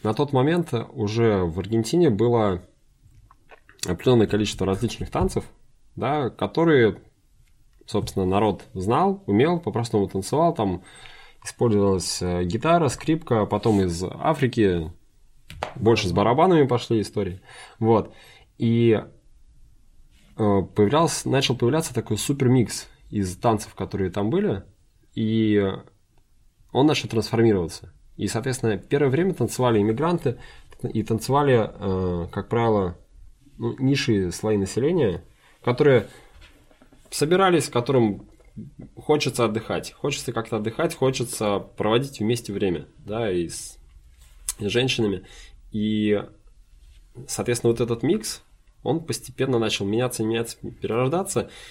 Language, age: Russian, 20-39